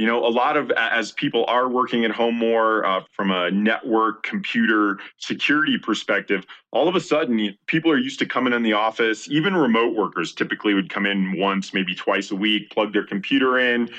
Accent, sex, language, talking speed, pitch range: American, male, English, 200 wpm, 105-140 Hz